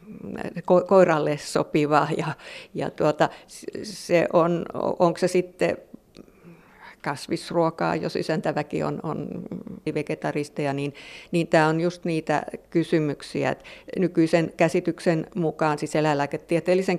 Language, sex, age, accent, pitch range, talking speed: Finnish, female, 50-69, native, 150-175 Hz, 100 wpm